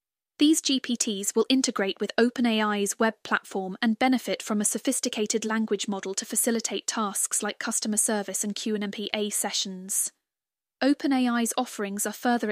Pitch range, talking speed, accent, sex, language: 205-230 Hz, 140 wpm, British, female, English